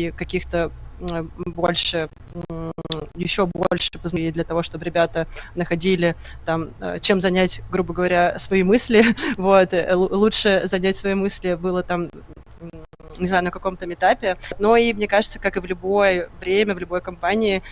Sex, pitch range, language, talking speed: female, 165-190 Hz, Russian, 135 wpm